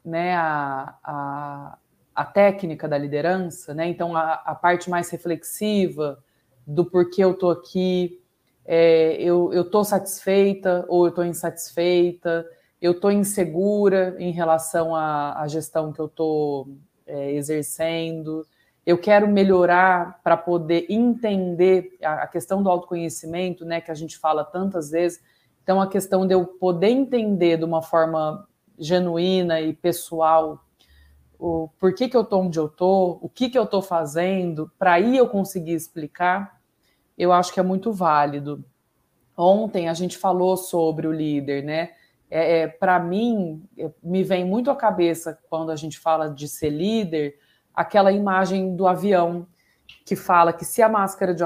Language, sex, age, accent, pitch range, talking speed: Portuguese, female, 20-39, Brazilian, 160-185 Hz, 150 wpm